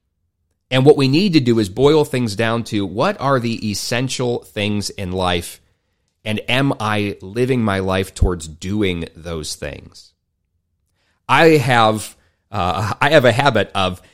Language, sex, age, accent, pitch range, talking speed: English, male, 30-49, American, 90-125 Hz, 155 wpm